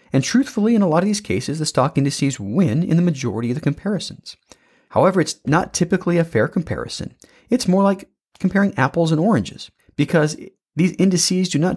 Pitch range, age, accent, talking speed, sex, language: 115-165 Hz, 30-49, American, 190 wpm, male, English